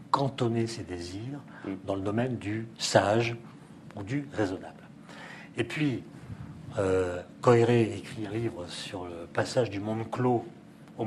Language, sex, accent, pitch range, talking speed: French, male, French, 100-140 Hz, 130 wpm